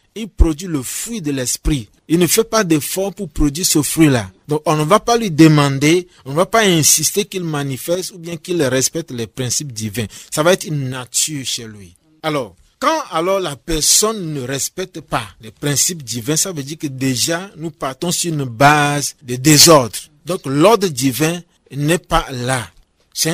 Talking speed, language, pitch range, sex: 190 wpm, French, 130-170 Hz, male